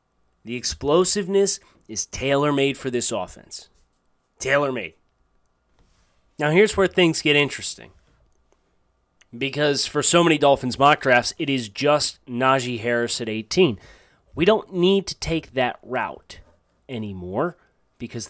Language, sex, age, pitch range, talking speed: English, male, 30-49, 120-160 Hz, 120 wpm